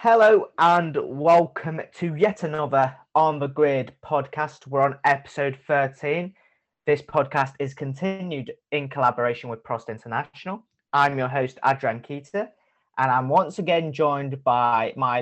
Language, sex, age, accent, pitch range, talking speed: English, male, 20-39, British, 125-160 Hz, 140 wpm